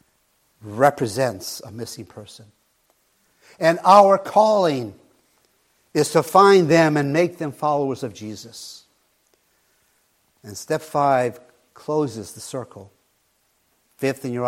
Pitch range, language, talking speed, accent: 110-150 Hz, English, 110 wpm, American